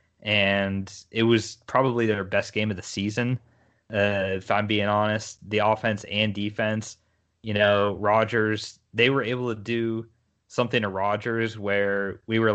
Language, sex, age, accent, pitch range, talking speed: English, male, 20-39, American, 100-115 Hz, 160 wpm